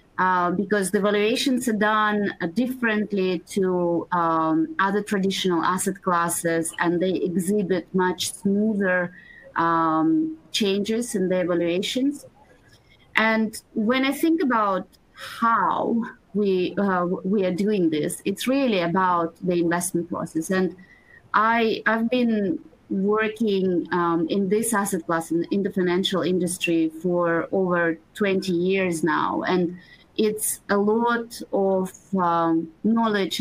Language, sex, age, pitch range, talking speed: English, female, 30-49, 175-210 Hz, 125 wpm